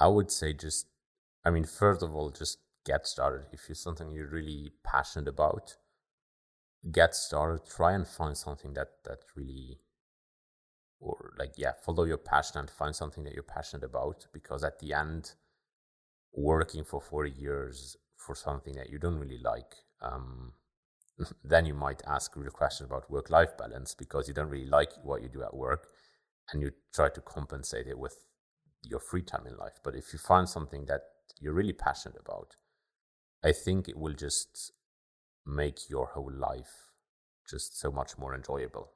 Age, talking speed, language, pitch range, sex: 30-49, 175 wpm, English, 70-80 Hz, male